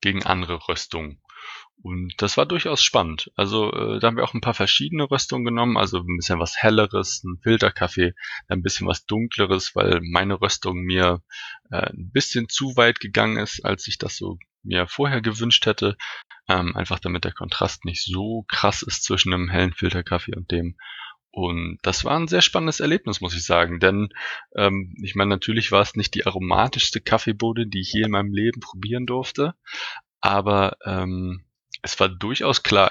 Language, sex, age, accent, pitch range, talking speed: German, male, 20-39, German, 90-120 Hz, 180 wpm